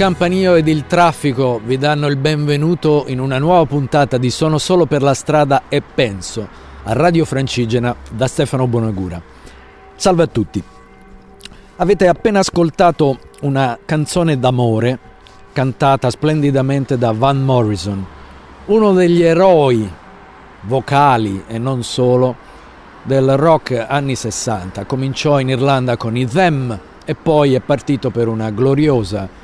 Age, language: 50-69, Italian